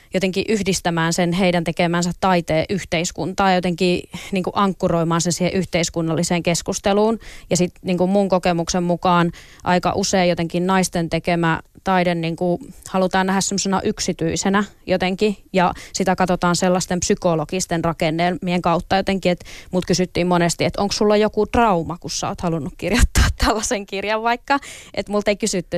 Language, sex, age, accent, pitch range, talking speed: Finnish, female, 20-39, native, 175-195 Hz, 145 wpm